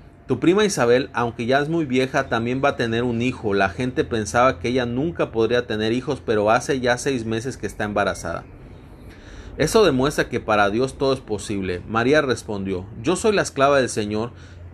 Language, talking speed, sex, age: Spanish, 190 wpm, male, 30-49